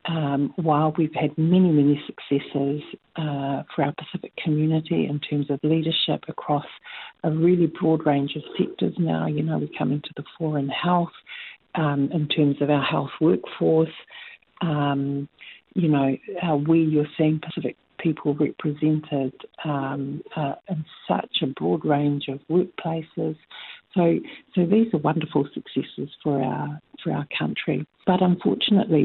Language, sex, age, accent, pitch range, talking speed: English, female, 50-69, Australian, 140-165 Hz, 145 wpm